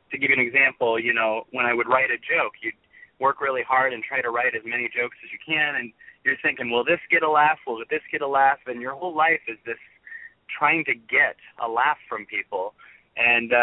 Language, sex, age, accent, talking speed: English, male, 20-39, American, 240 wpm